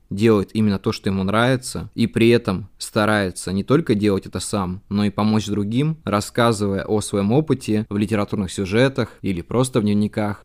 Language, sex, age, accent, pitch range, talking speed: Russian, male, 20-39, native, 105-120 Hz, 170 wpm